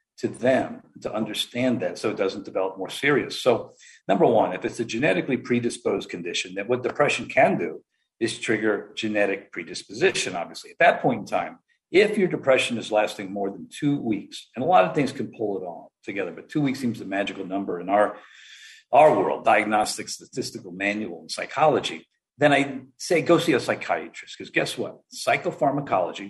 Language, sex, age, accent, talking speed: English, male, 50-69, American, 185 wpm